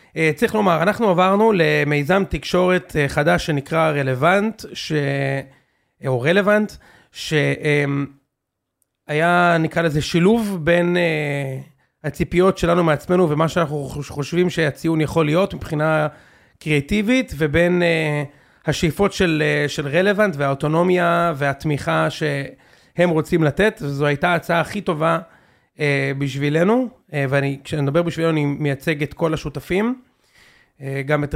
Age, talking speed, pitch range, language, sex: 30-49, 105 wpm, 145-180 Hz, Hebrew, male